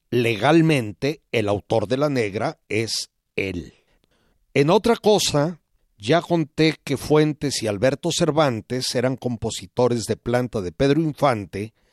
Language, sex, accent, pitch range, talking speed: Spanish, male, Mexican, 115-150 Hz, 125 wpm